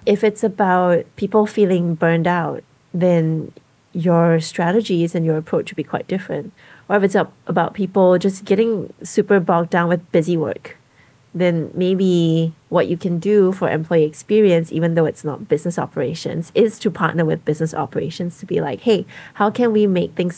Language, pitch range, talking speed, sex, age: English, 160-190 Hz, 175 wpm, female, 30-49